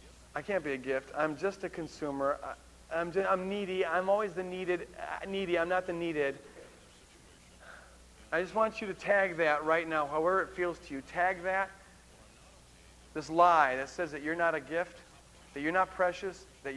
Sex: male